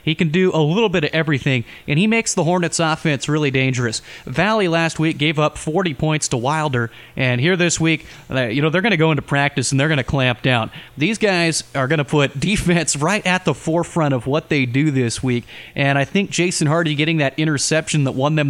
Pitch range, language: 140-175 Hz, English